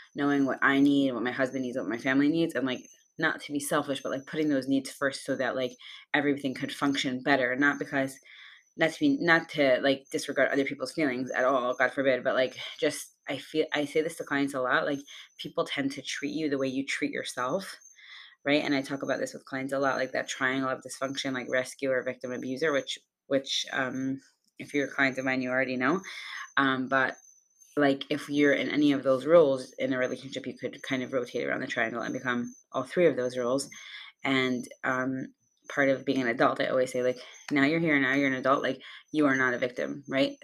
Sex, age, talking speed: female, 20-39, 230 wpm